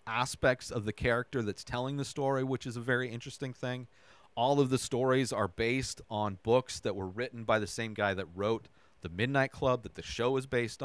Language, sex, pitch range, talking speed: English, male, 110-135 Hz, 215 wpm